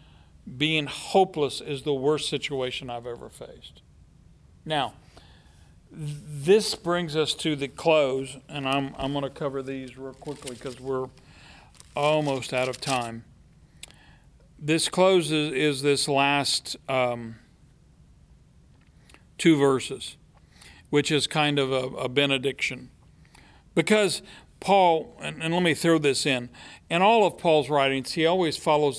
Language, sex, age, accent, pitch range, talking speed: English, male, 50-69, American, 135-175 Hz, 130 wpm